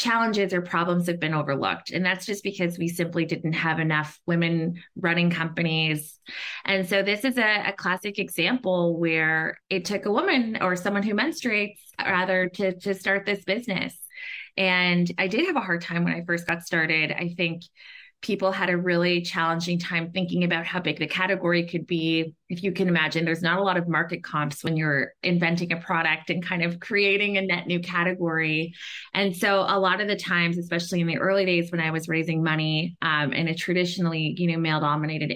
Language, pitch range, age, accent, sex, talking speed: English, 165-190 Hz, 20-39, American, female, 195 wpm